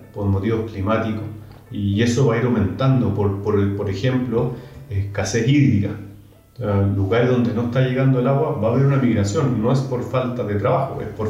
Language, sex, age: Spanish, male, 30-49